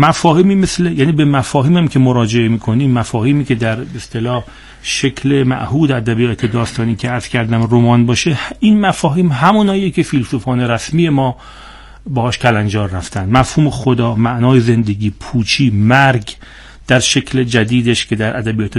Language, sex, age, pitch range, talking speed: Persian, male, 40-59, 115-140 Hz, 135 wpm